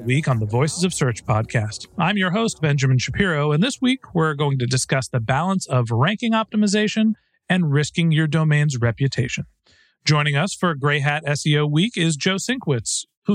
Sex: male